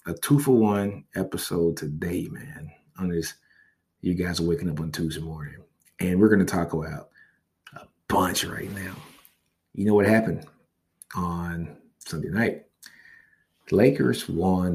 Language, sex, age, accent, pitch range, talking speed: English, male, 30-49, American, 85-100 Hz, 145 wpm